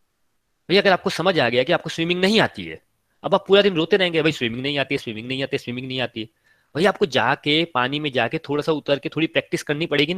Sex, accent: male, native